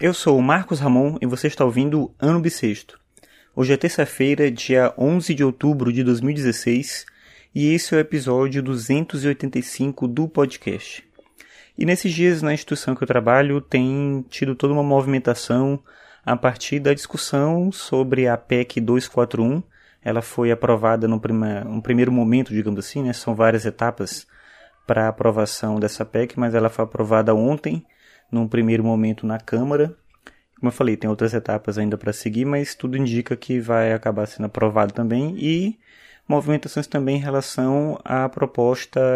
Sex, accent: male, Brazilian